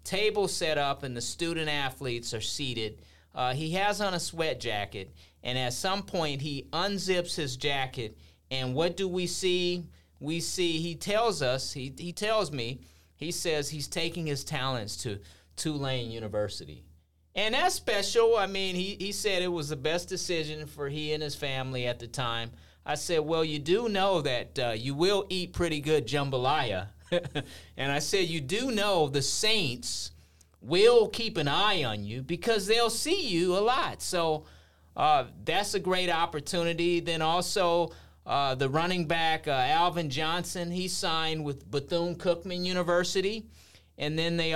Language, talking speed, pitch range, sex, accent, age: English, 170 wpm, 125-175 Hz, male, American, 30-49